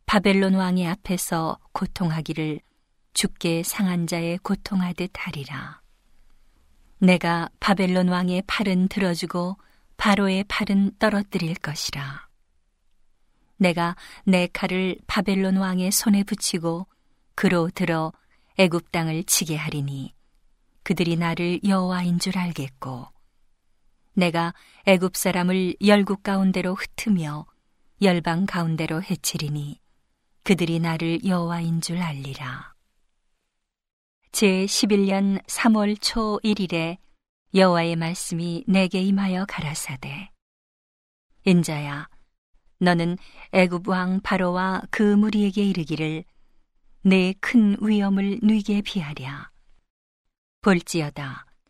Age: 40-59